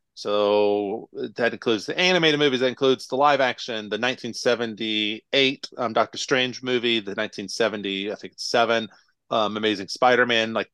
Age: 30-49